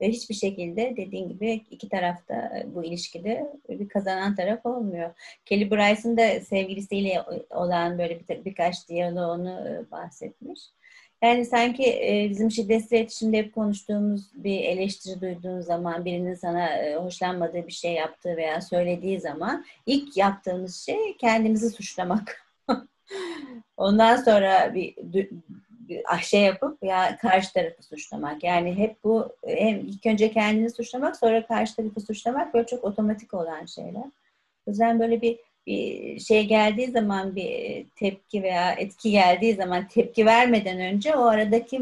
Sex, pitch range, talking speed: female, 185-235 Hz, 130 wpm